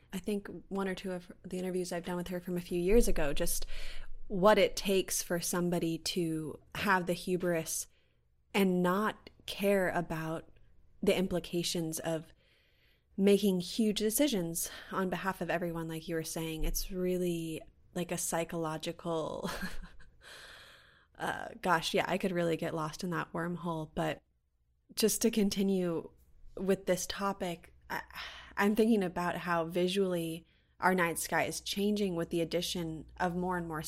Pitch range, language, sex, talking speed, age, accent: 165-200 Hz, English, female, 150 wpm, 20-39, American